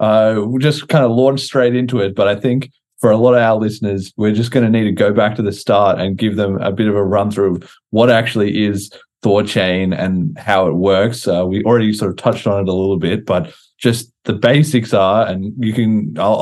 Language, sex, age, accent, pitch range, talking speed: English, male, 20-39, Australian, 100-125 Hz, 245 wpm